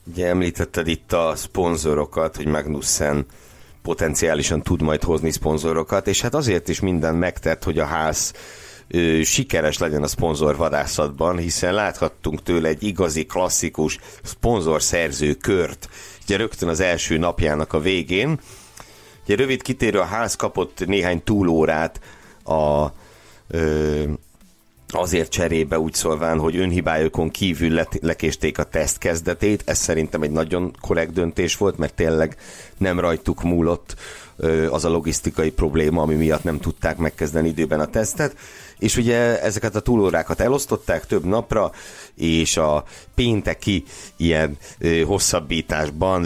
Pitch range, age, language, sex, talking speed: 80-90 Hz, 60-79, Hungarian, male, 125 wpm